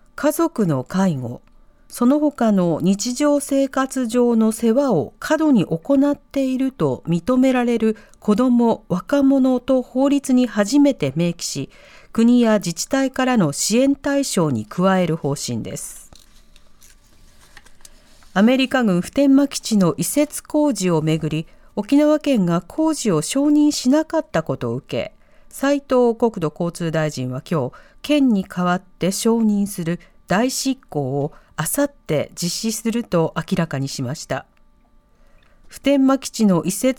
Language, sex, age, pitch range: Japanese, female, 50-69, 170-265 Hz